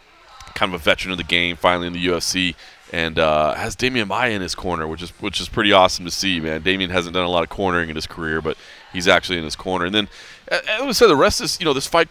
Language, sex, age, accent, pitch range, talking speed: English, male, 30-49, American, 90-140 Hz, 275 wpm